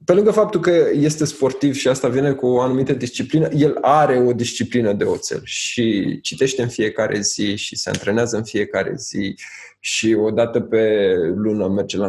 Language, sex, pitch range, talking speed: Romanian, male, 110-150 Hz, 180 wpm